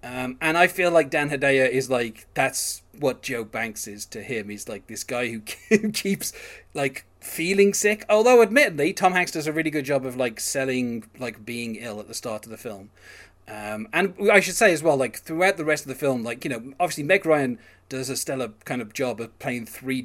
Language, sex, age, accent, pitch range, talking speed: English, male, 30-49, British, 115-160 Hz, 225 wpm